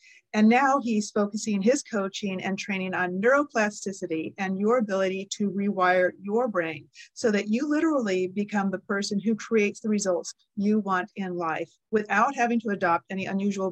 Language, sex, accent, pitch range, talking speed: English, female, American, 190-220 Hz, 165 wpm